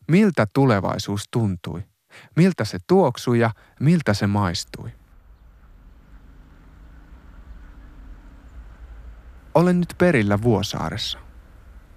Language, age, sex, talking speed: Finnish, 30-49, male, 70 wpm